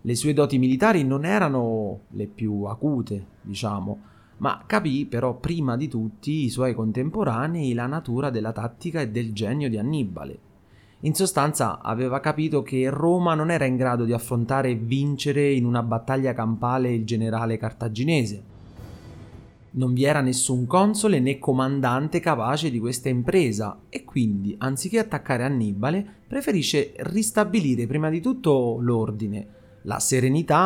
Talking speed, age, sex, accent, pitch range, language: 145 wpm, 30-49, male, native, 110-140 Hz, Italian